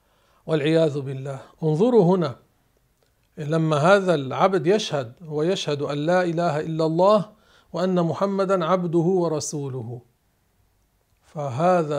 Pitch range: 145-180 Hz